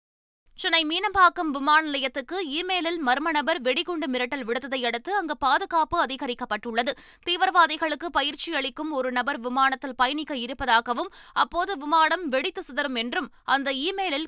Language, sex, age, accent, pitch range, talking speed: Tamil, female, 20-39, native, 250-325 Hz, 115 wpm